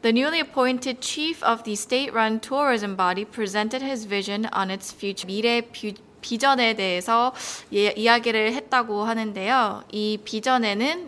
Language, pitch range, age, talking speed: English, 210-260 Hz, 20-39, 125 wpm